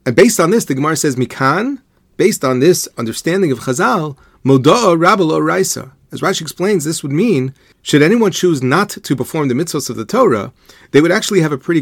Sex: male